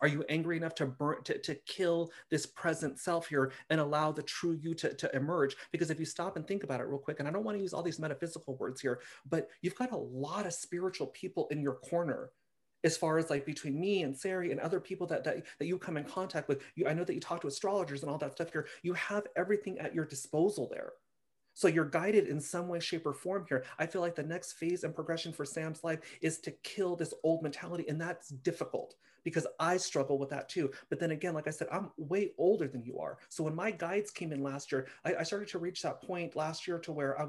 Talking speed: 255 wpm